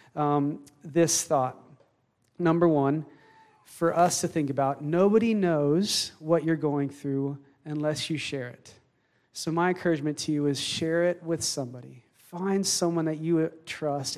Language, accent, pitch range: English, American, 140-170 Hz